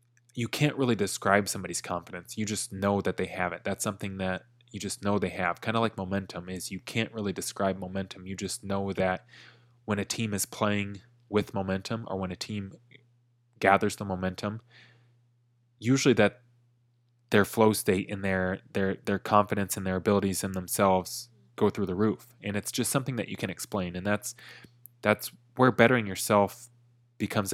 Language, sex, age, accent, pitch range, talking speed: English, male, 20-39, American, 95-120 Hz, 180 wpm